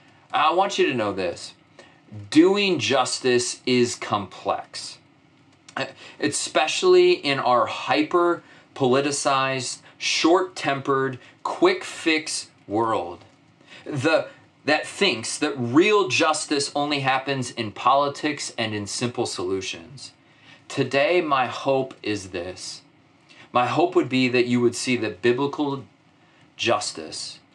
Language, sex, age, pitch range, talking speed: English, male, 30-49, 115-145 Hz, 100 wpm